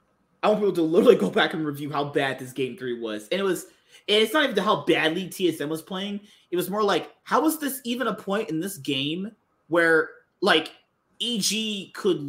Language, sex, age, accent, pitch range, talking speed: English, male, 20-39, American, 155-210 Hz, 220 wpm